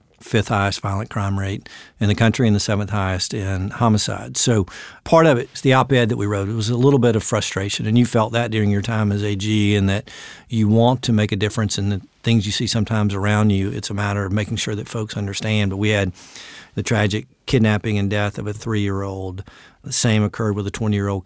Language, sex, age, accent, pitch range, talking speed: English, male, 50-69, American, 100-115 Hz, 230 wpm